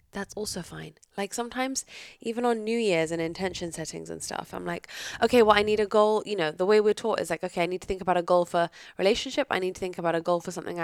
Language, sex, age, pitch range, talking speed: English, female, 10-29, 170-215 Hz, 270 wpm